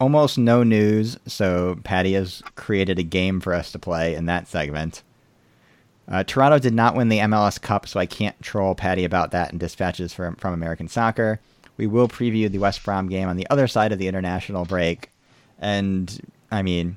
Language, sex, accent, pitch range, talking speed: English, male, American, 90-120 Hz, 195 wpm